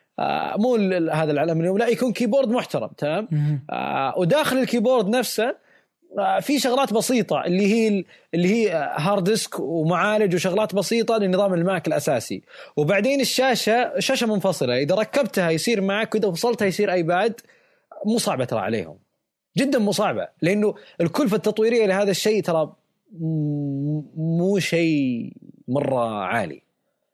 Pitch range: 175-250 Hz